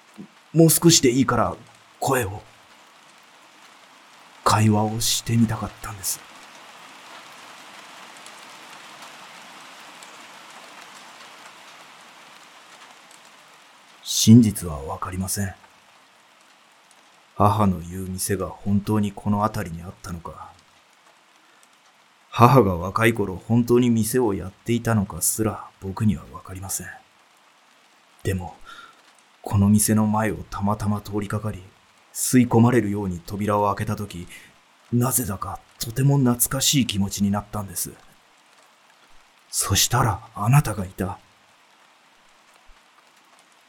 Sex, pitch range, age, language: male, 100-120 Hz, 30-49, Japanese